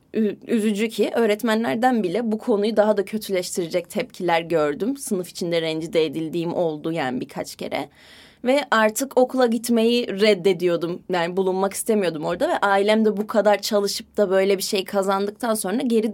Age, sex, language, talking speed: 20-39, female, Turkish, 150 wpm